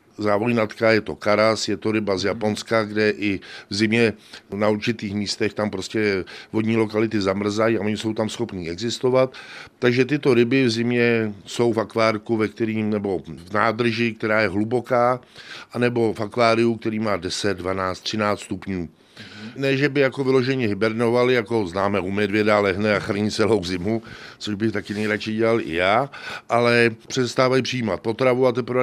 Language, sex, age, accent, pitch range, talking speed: Czech, male, 50-69, native, 105-120 Hz, 165 wpm